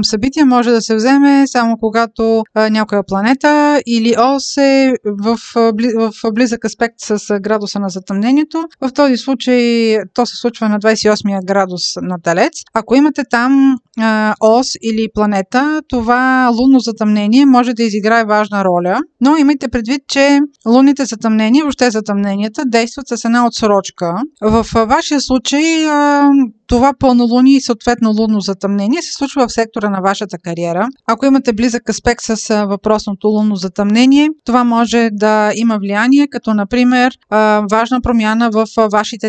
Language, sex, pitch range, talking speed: Bulgarian, female, 215-255 Hz, 145 wpm